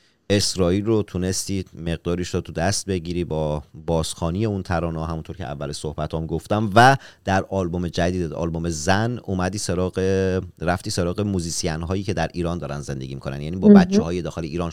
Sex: male